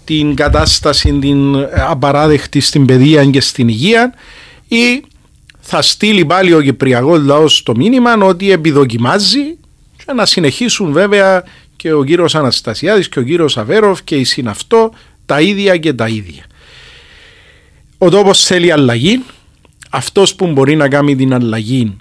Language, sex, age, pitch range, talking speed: Greek, male, 40-59, 135-190 Hz, 140 wpm